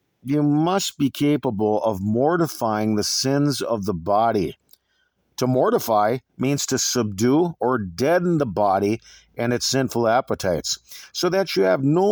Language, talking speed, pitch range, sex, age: English, 145 wpm, 125-175 Hz, male, 50-69